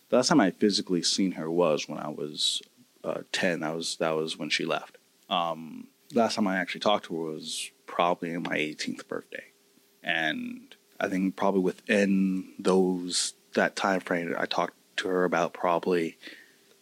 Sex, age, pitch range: male, 20-39, 85-105 Hz